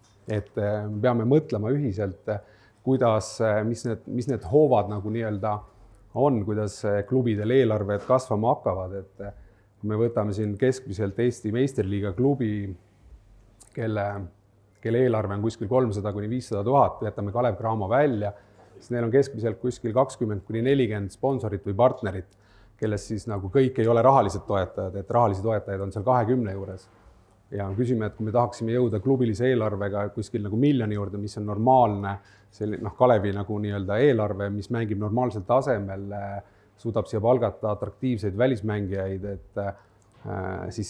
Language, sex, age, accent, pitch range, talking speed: English, male, 30-49, Finnish, 100-120 Hz, 145 wpm